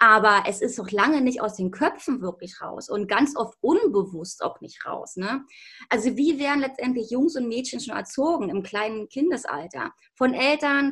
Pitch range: 210-275 Hz